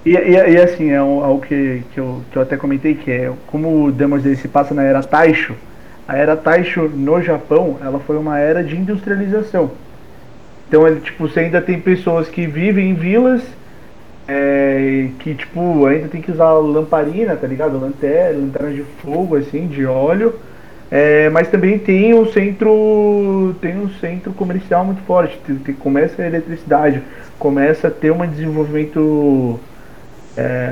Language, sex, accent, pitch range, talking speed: Portuguese, male, Brazilian, 140-175 Hz, 170 wpm